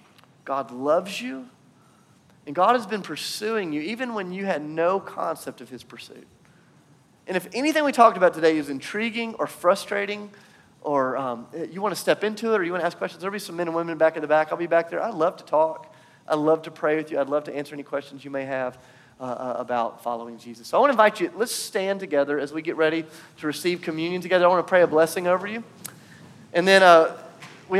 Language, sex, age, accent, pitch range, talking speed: English, male, 30-49, American, 135-180 Hz, 235 wpm